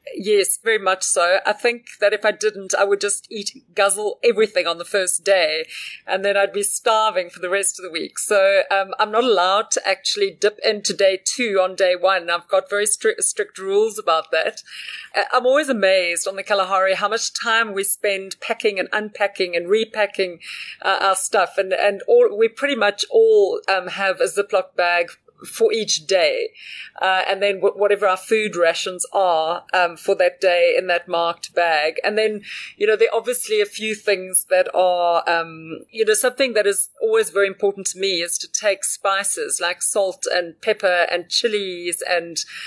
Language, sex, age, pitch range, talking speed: English, female, 40-59, 185-240 Hz, 195 wpm